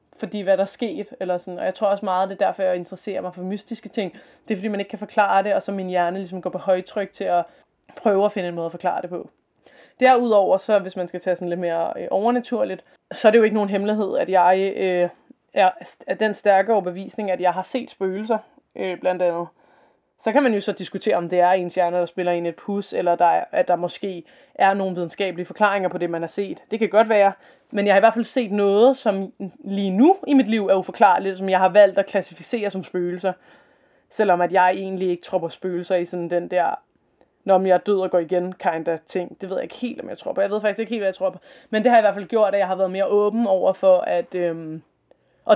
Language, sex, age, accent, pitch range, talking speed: Danish, female, 20-39, native, 180-215 Hz, 255 wpm